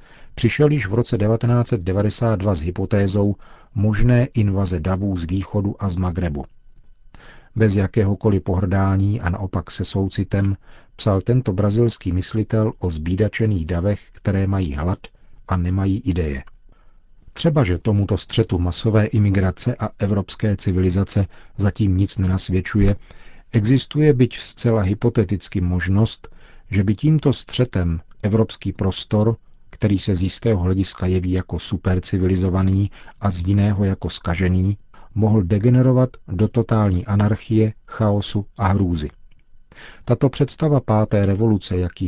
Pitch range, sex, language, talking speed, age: 95-110 Hz, male, Czech, 120 wpm, 40-59